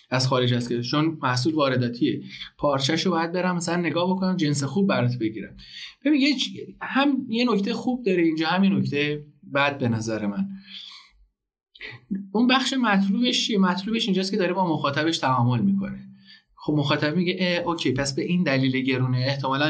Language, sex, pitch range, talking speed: Persian, male, 130-195 Hz, 160 wpm